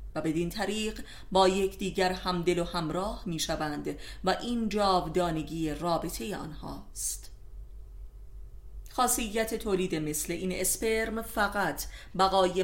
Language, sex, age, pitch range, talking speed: Persian, female, 30-49, 165-205 Hz, 95 wpm